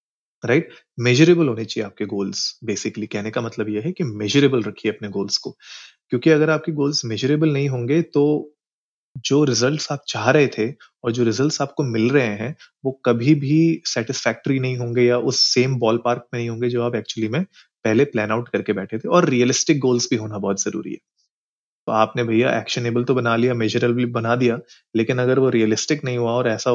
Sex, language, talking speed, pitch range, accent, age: male, Hindi, 130 wpm, 115-140 Hz, native, 30-49